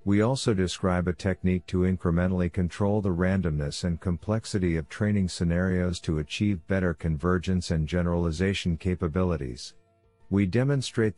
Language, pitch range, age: English, 85-105 Hz, 50-69